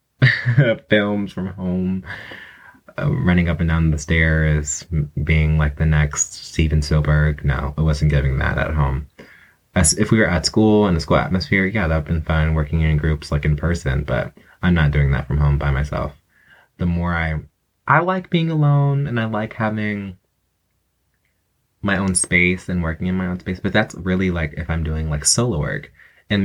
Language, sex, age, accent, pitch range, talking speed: English, male, 20-39, American, 75-100 Hz, 190 wpm